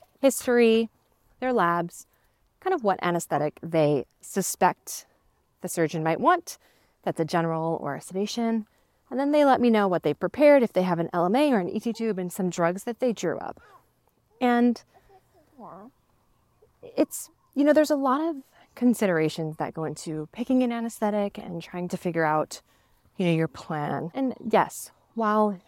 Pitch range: 165-230 Hz